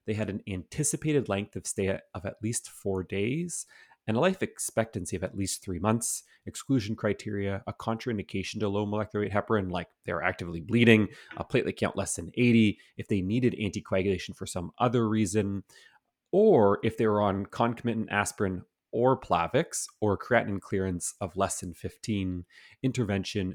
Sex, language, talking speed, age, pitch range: male, English, 165 wpm, 30-49, 95-110 Hz